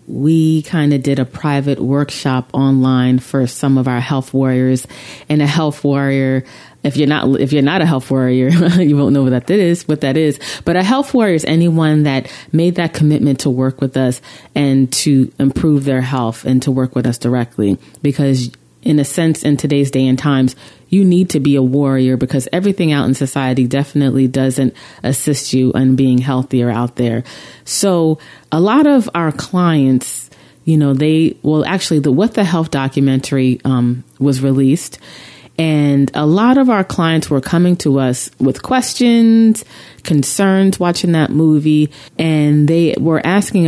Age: 30-49